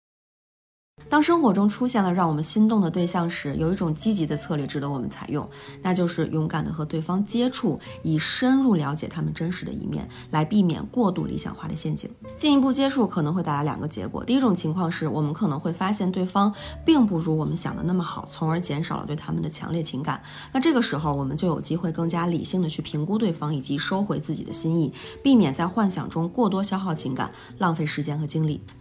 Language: Chinese